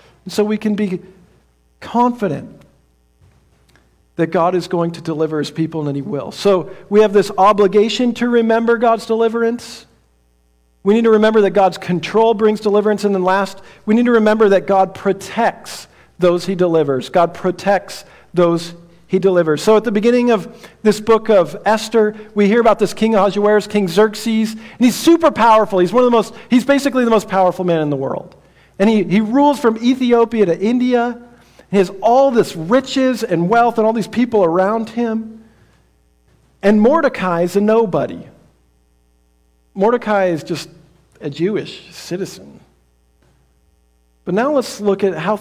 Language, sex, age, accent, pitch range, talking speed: English, male, 50-69, American, 170-225 Hz, 165 wpm